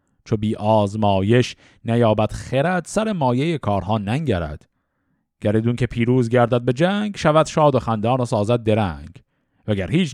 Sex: male